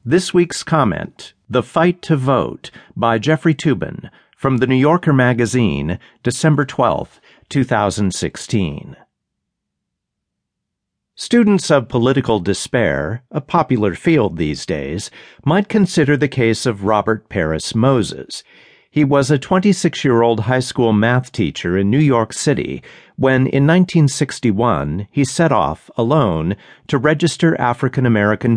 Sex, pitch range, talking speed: male, 110-140 Hz, 120 wpm